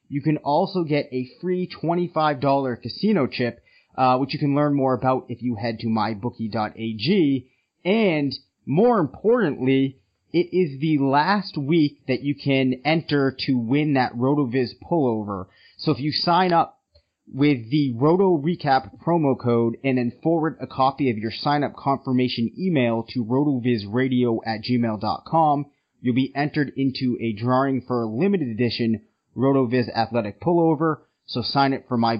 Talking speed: 155 wpm